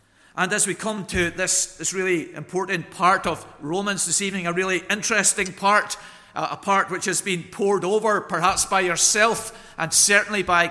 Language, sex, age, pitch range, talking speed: English, male, 50-69, 160-200 Hz, 180 wpm